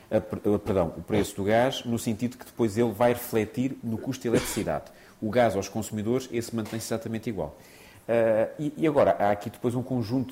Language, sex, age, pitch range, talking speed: Portuguese, male, 30-49, 95-120 Hz, 200 wpm